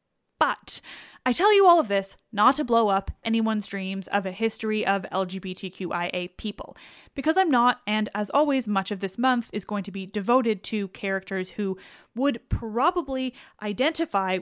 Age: 10-29